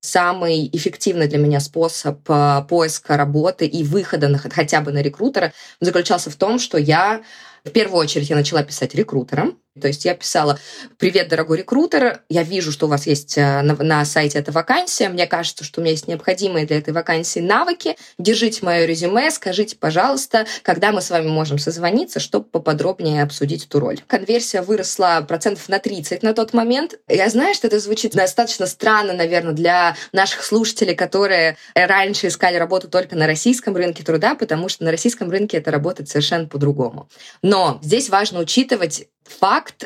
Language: Russian